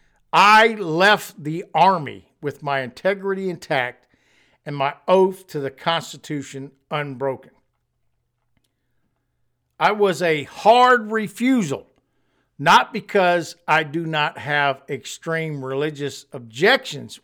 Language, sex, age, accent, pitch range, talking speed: English, male, 50-69, American, 140-200 Hz, 100 wpm